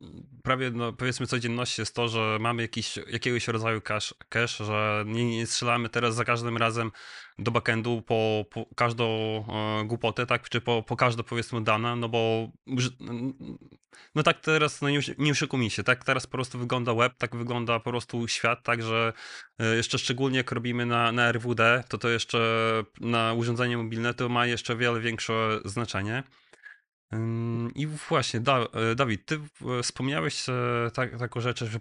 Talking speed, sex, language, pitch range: 160 wpm, male, Polish, 115-130 Hz